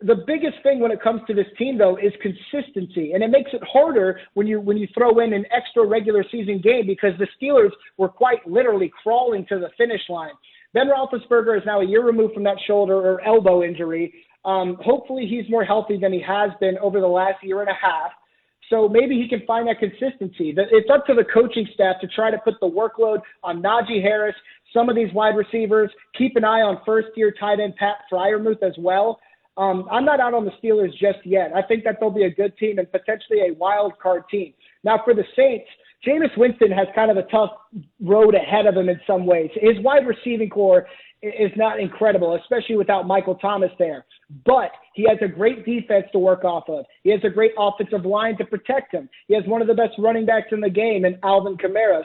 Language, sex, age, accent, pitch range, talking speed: English, male, 30-49, American, 195-230 Hz, 220 wpm